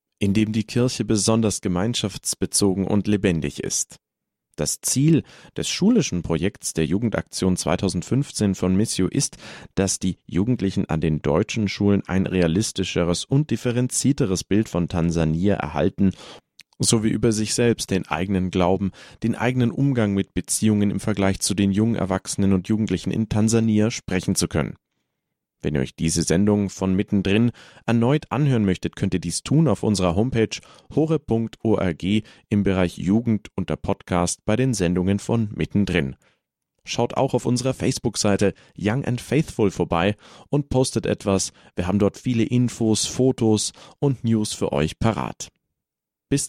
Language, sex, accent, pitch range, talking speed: German, male, German, 95-115 Hz, 145 wpm